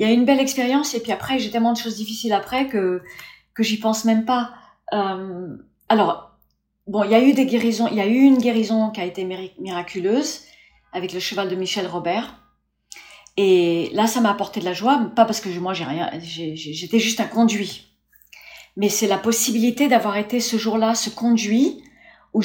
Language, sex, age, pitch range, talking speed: French, female, 40-59, 185-235 Hz, 205 wpm